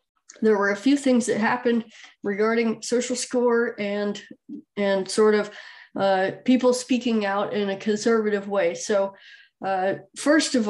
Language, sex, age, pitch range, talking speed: English, female, 20-39, 200-240 Hz, 145 wpm